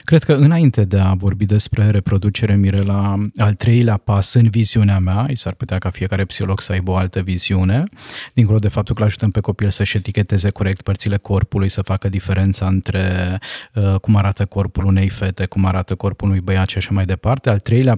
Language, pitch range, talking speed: Romanian, 100-115 Hz, 195 wpm